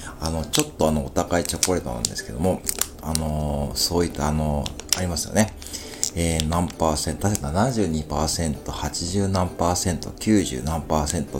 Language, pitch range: Japanese, 75-105 Hz